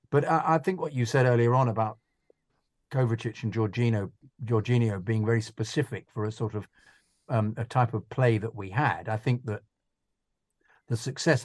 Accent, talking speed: British, 175 wpm